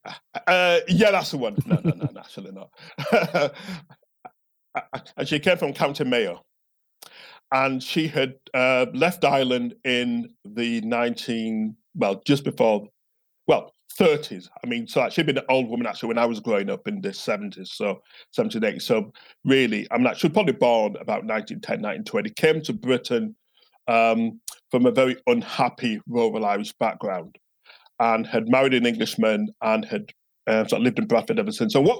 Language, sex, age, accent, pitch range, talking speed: English, male, 40-59, British, 120-190 Hz, 165 wpm